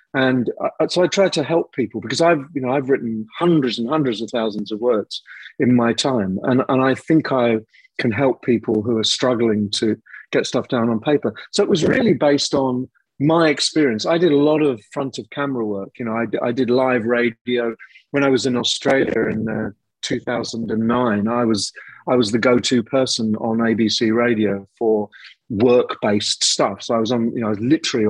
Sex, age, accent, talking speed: male, 40-59, British, 215 wpm